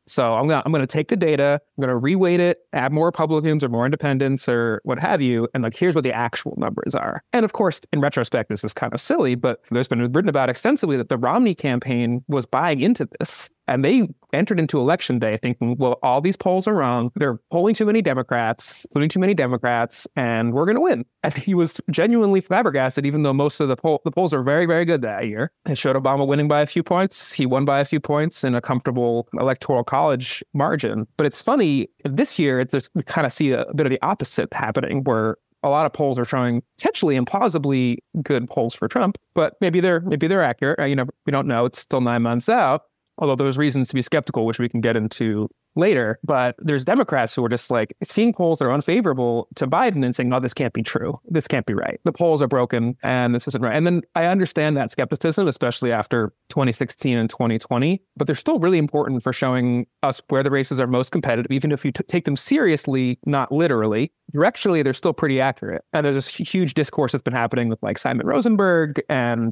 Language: English